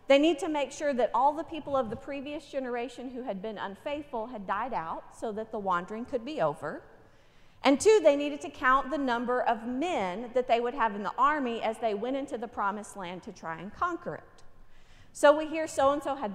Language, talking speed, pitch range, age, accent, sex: English, 230 wpm, 220-290 Hz, 40-59, American, female